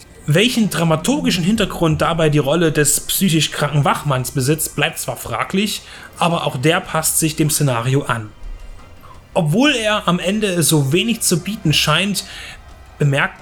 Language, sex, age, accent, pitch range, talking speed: German, male, 30-49, German, 140-180 Hz, 145 wpm